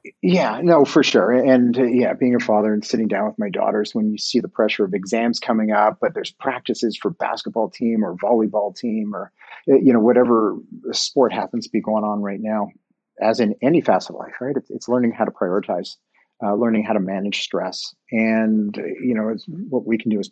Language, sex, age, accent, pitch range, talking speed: English, male, 30-49, American, 110-130 Hz, 215 wpm